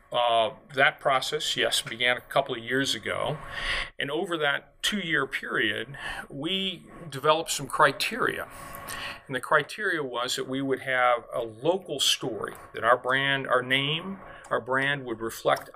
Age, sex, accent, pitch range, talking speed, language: 40-59, male, American, 115-140 Hz, 150 wpm, English